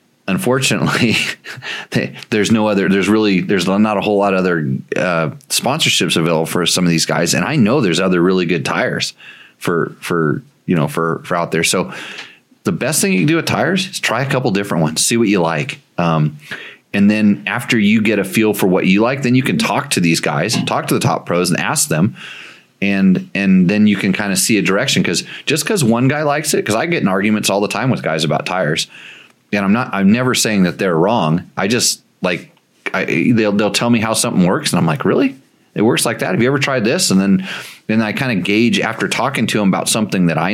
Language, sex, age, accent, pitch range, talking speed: English, male, 30-49, American, 90-115 Hz, 240 wpm